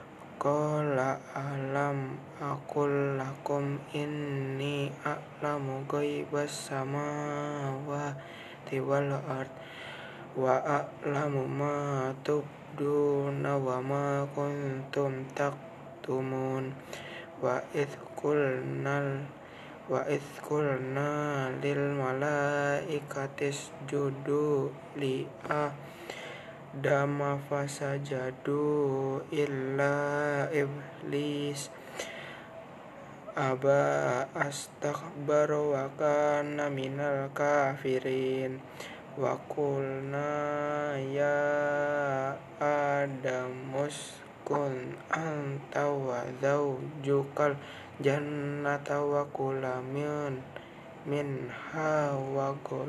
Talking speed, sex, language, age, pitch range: 50 wpm, male, Indonesian, 20-39, 135-145 Hz